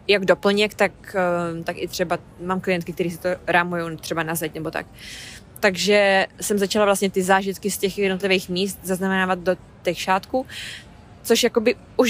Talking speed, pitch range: 170 wpm, 175-205 Hz